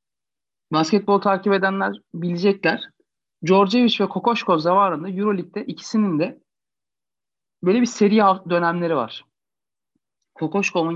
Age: 40-59